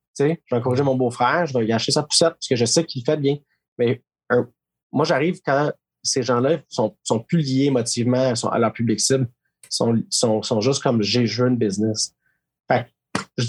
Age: 30-49